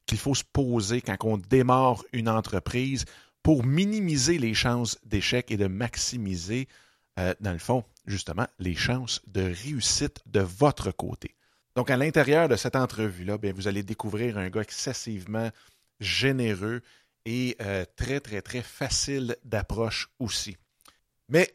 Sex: male